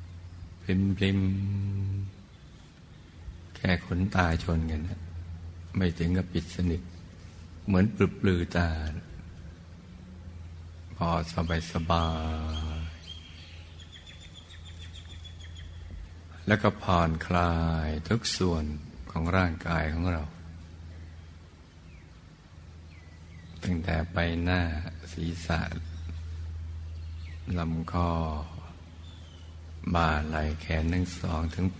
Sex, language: male, Thai